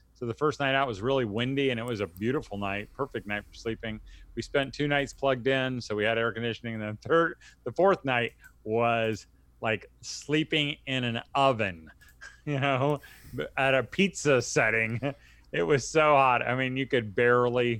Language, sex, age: English, male, 30-49